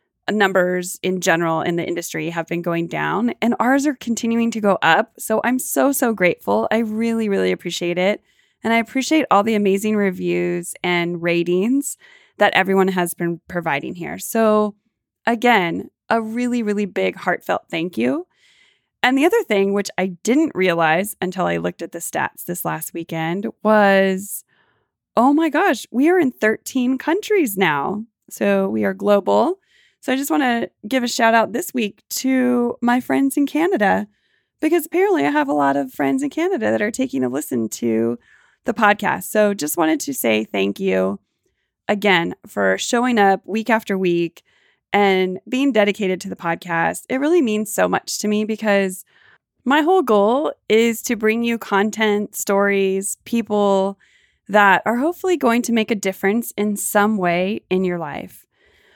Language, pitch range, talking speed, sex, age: English, 175-240 Hz, 170 wpm, female, 20-39